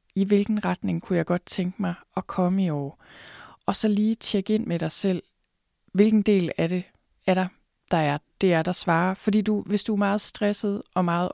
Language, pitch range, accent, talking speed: Danish, 175-200 Hz, native, 215 wpm